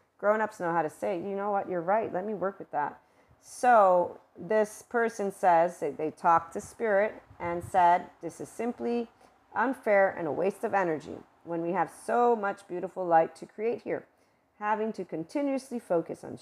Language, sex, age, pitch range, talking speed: English, female, 40-59, 170-210 Hz, 180 wpm